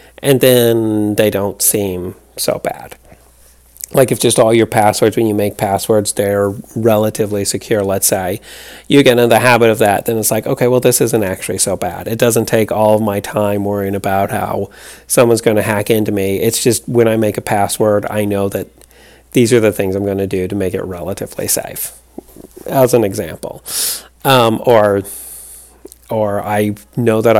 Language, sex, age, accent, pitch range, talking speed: English, male, 30-49, American, 100-115 Hz, 190 wpm